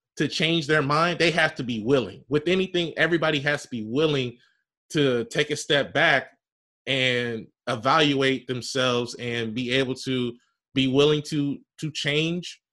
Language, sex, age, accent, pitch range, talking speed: English, male, 20-39, American, 125-155 Hz, 155 wpm